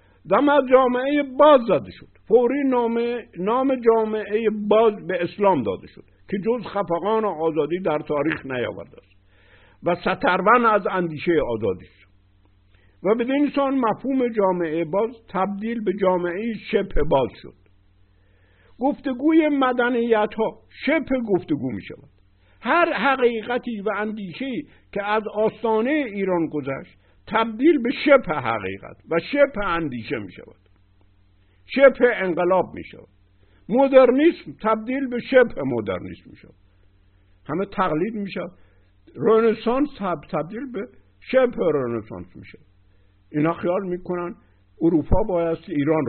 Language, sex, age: Persian, male, 60-79